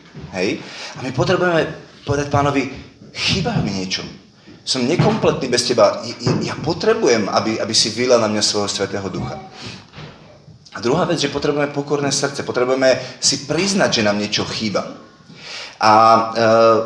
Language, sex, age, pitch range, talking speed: Slovak, male, 30-49, 105-140 Hz, 150 wpm